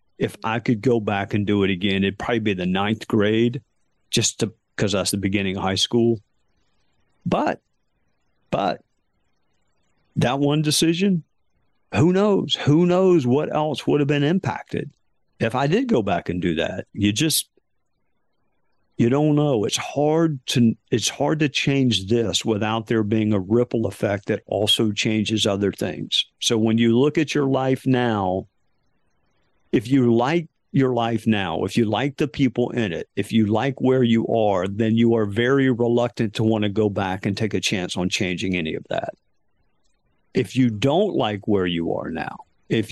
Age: 50-69